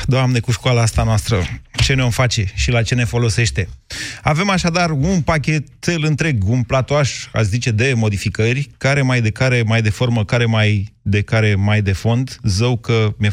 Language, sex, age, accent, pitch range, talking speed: Romanian, male, 30-49, native, 100-125 Hz, 185 wpm